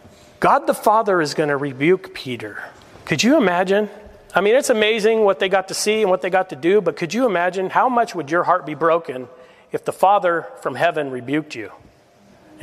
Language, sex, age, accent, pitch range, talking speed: English, male, 40-59, American, 145-185 Hz, 215 wpm